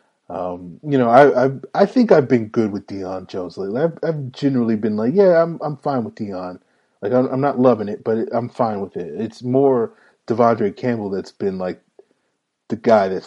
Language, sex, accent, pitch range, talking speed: English, male, American, 105-135 Hz, 210 wpm